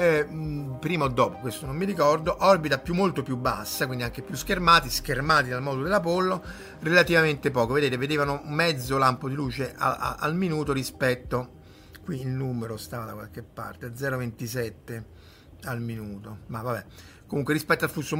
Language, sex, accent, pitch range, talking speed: Italian, male, native, 120-160 Hz, 165 wpm